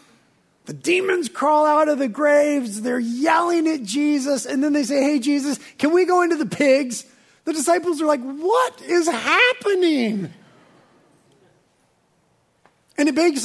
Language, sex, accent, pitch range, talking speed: English, male, American, 225-320 Hz, 145 wpm